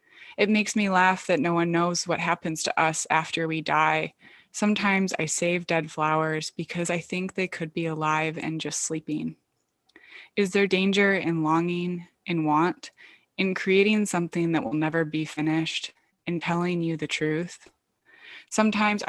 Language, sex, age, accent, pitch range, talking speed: English, female, 20-39, American, 155-180 Hz, 160 wpm